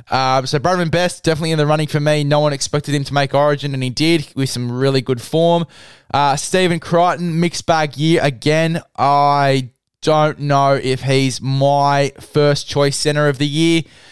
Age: 10-29